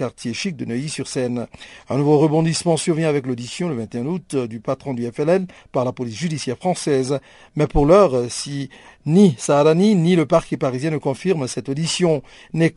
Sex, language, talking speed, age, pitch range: male, French, 175 wpm, 50-69, 130-165 Hz